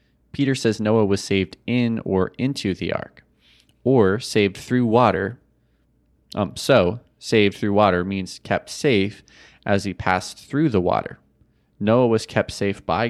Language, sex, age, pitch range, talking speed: English, male, 20-39, 95-115 Hz, 150 wpm